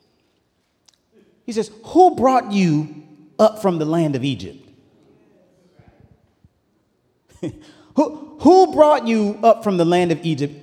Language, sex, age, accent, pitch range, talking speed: English, male, 40-59, American, 145-205 Hz, 120 wpm